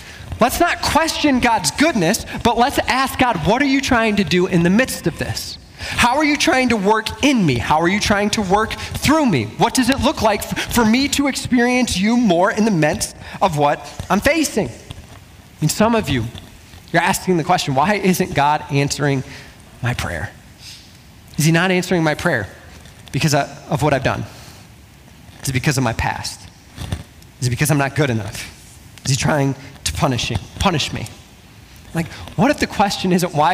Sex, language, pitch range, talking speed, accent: male, English, 130-185 Hz, 195 wpm, American